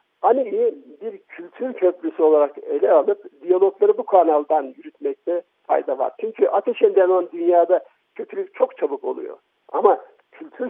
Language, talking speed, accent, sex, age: Turkish, 130 wpm, native, male, 60-79